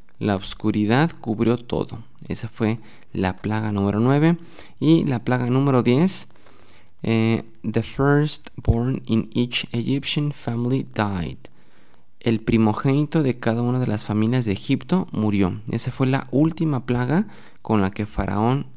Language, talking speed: English, 140 wpm